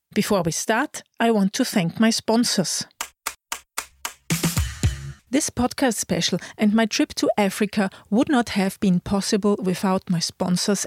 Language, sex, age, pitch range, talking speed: English, female, 40-59, 200-250 Hz, 140 wpm